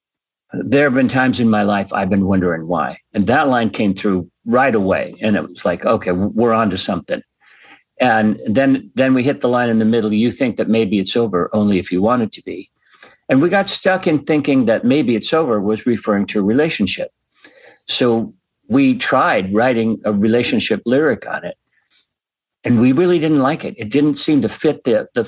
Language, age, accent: English, 50-69, American